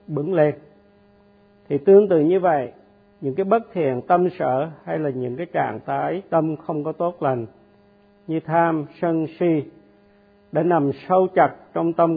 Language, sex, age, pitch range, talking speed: Vietnamese, male, 50-69, 140-200 Hz, 170 wpm